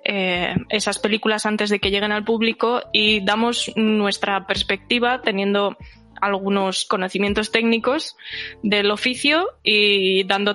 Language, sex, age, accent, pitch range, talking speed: Spanish, female, 20-39, Spanish, 195-220 Hz, 120 wpm